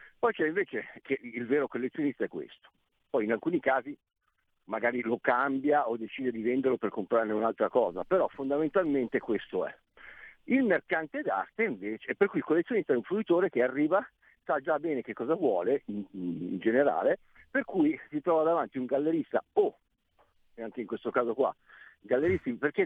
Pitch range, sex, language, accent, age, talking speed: 120-195 Hz, male, Italian, native, 50-69, 170 wpm